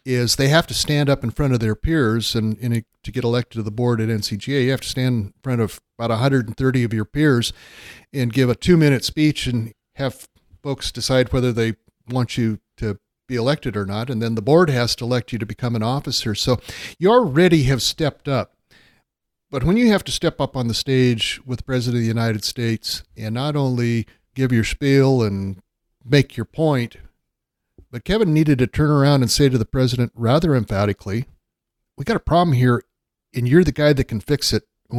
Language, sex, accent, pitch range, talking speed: English, male, American, 110-135 Hz, 210 wpm